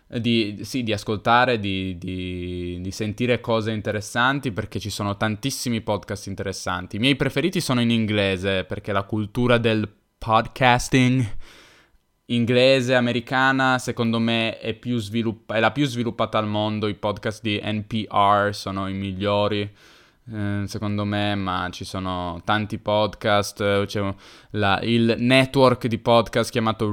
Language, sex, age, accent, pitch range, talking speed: Italian, male, 10-29, native, 105-125 Hz, 140 wpm